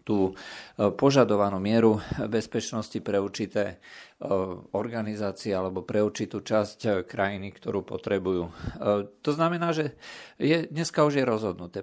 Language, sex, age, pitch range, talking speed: Slovak, male, 50-69, 100-125 Hz, 105 wpm